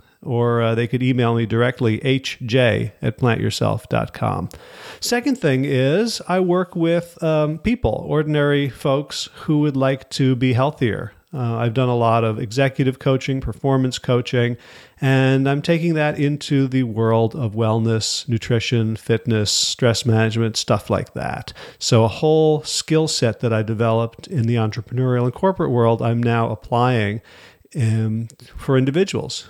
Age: 40-59